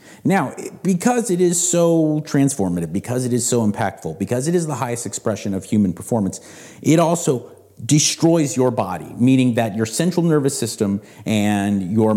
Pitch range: 105-150 Hz